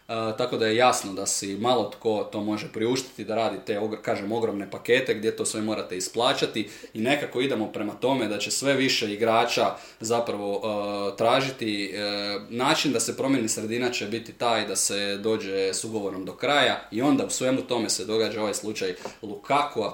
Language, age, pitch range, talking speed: Croatian, 20-39, 105-120 Hz, 185 wpm